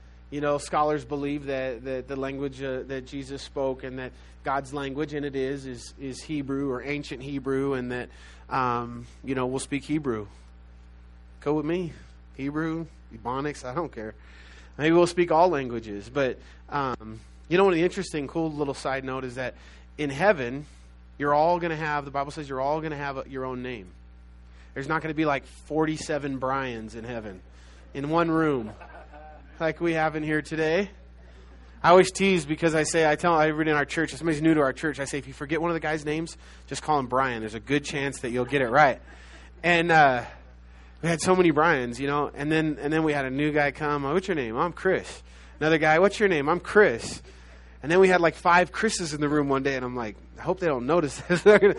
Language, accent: English, American